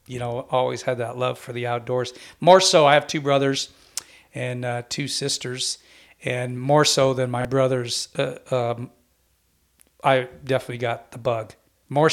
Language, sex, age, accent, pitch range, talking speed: English, male, 40-59, American, 120-130 Hz, 165 wpm